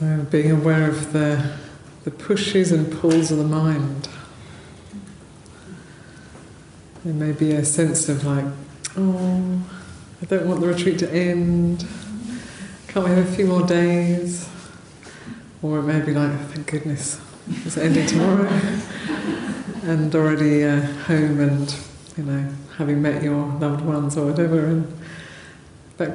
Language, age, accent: English, 40-59, British